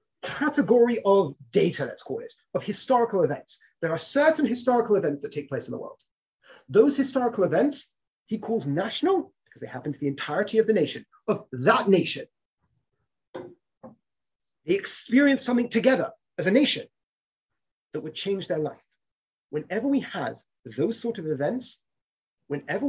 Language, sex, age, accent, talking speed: English, male, 30-49, British, 150 wpm